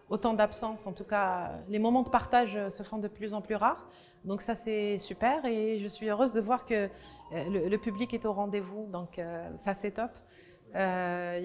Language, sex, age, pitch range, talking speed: Arabic, female, 30-49, 190-230 Hz, 205 wpm